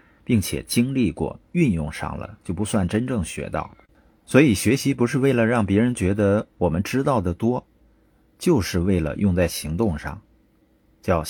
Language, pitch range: Chinese, 85-115 Hz